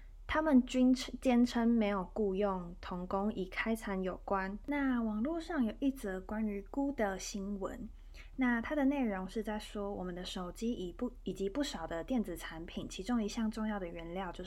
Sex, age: female, 20-39